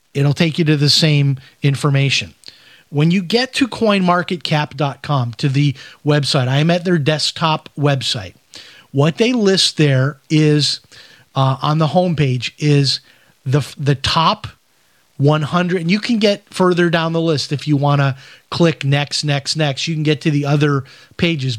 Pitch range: 140-175 Hz